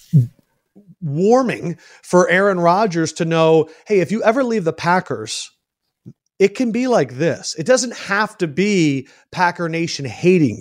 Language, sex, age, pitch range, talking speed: English, male, 40-59, 145-185 Hz, 145 wpm